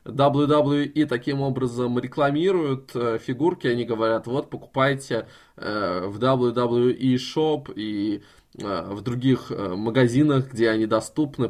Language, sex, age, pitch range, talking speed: Russian, male, 20-39, 120-150 Hz, 110 wpm